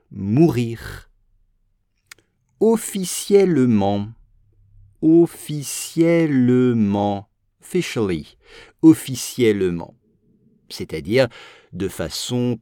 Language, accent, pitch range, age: English, French, 100-150 Hz, 50-69